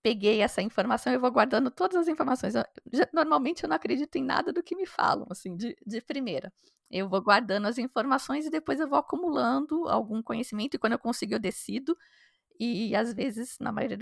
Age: 20-39